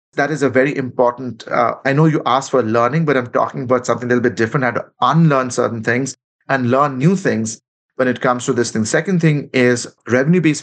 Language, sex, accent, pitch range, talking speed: English, male, Indian, 115-135 Hz, 230 wpm